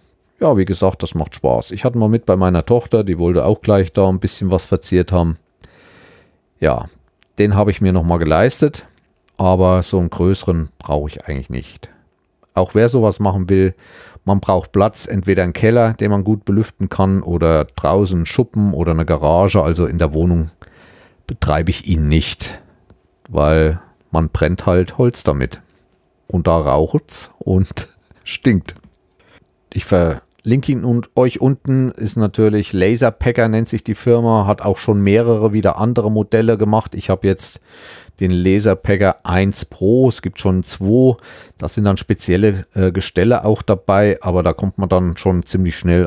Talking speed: 170 wpm